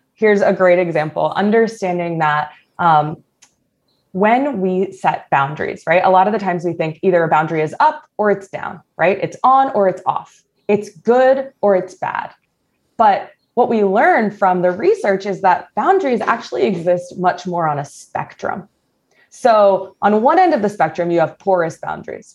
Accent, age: American, 20-39